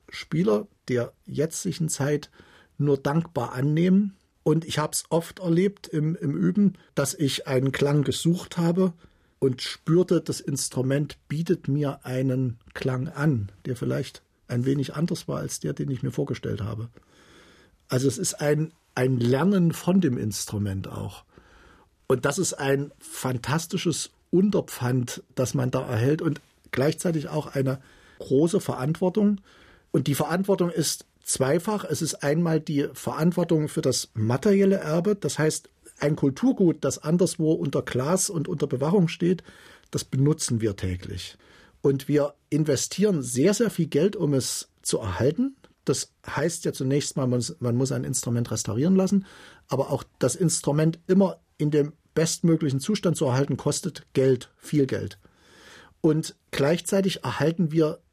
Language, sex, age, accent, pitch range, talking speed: German, male, 50-69, German, 130-170 Hz, 145 wpm